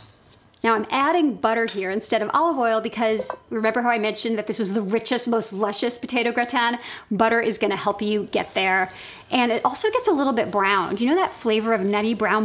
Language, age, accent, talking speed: English, 40-59, American, 215 wpm